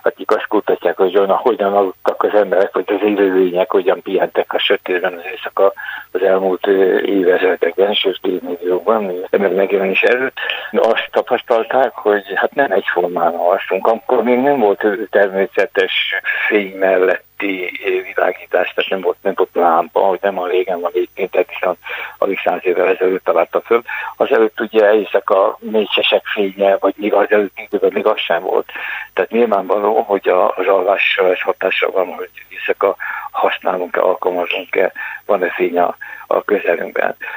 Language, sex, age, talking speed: Hungarian, male, 60-79, 155 wpm